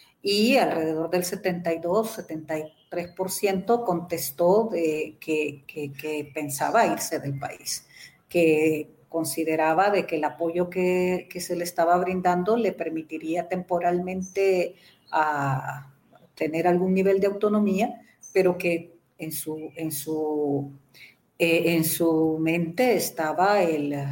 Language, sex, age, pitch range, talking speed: English, female, 40-59, 160-195 Hz, 105 wpm